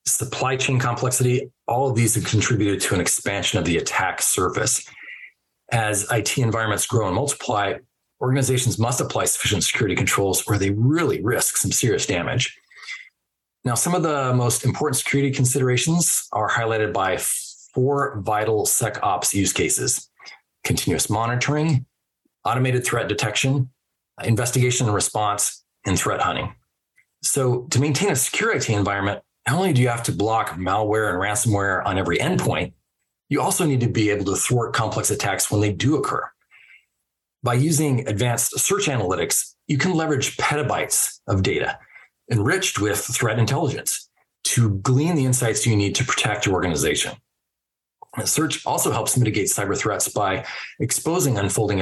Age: 40-59